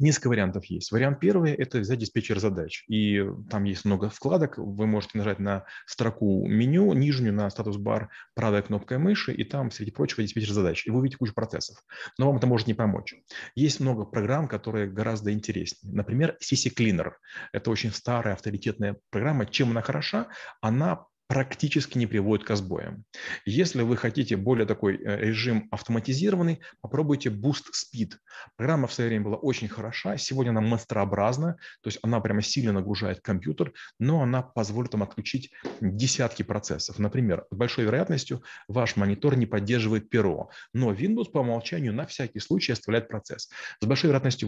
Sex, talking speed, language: male, 165 wpm, Russian